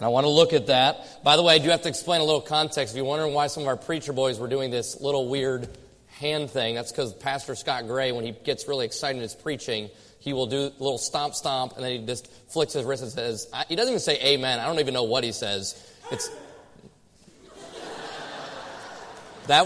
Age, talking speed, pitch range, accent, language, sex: 30-49, 230 wpm, 135-170 Hz, American, English, male